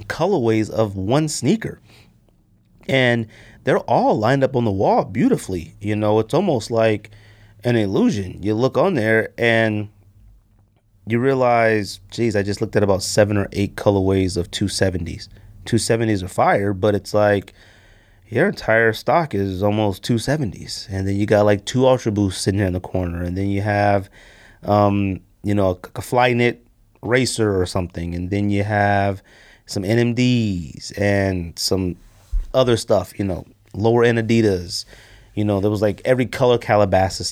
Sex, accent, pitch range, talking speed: male, American, 100-115 Hz, 165 wpm